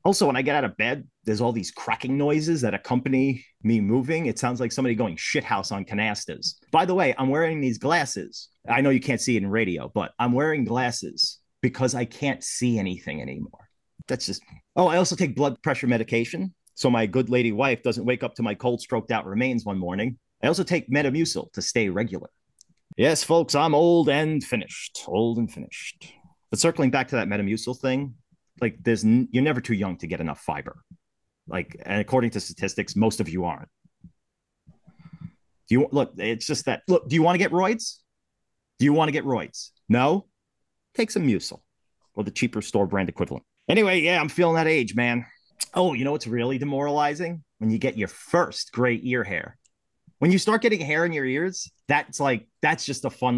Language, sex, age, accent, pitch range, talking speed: English, male, 30-49, American, 115-150 Hz, 200 wpm